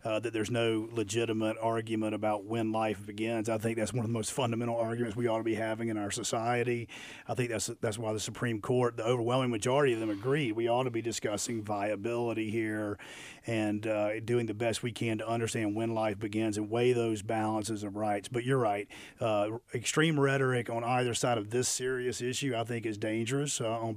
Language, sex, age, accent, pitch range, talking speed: English, male, 40-59, American, 110-125 Hz, 215 wpm